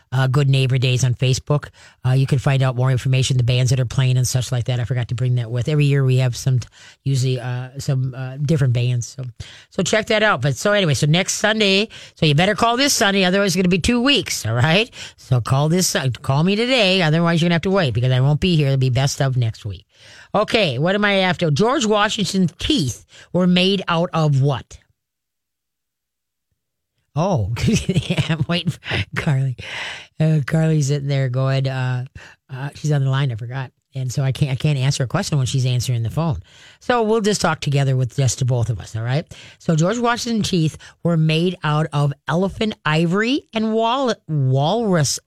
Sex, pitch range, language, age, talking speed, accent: female, 125-170 Hz, English, 40-59, 210 wpm, American